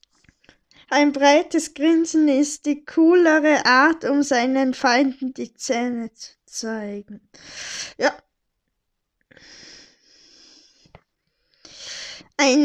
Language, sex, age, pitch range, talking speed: German, female, 10-29, 240-300 Hz, 75 wpm